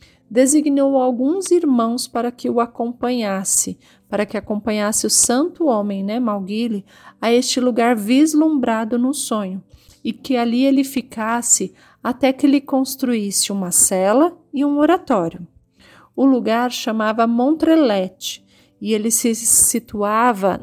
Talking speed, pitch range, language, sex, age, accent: 125 wpm, 195-260 Hz, Portuguese, female, 40-59, Brazilian